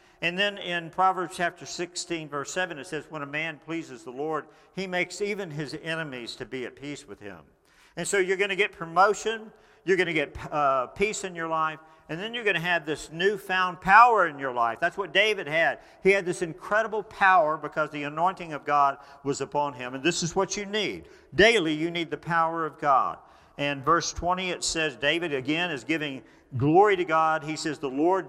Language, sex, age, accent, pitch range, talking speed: English, male, 50-69, American, 155-200 Hz, 215 wpm